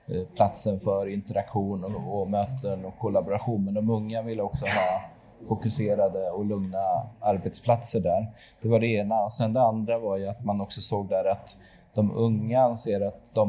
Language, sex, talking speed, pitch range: Swedish, male, 180 wpm, 100-115 Hz